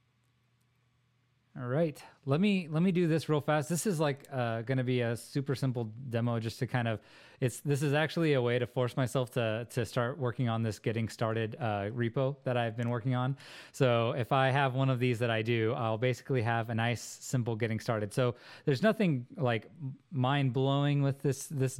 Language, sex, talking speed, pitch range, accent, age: English, male, 210 wpm, 120-140 Hz, American, 20-39